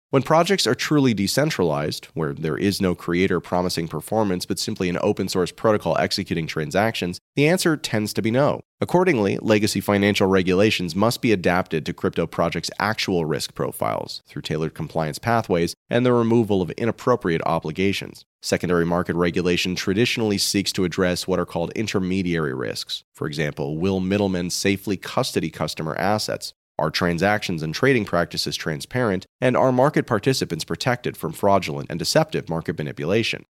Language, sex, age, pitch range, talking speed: English, male, 30-49, 90-115 Hz, 150 wpm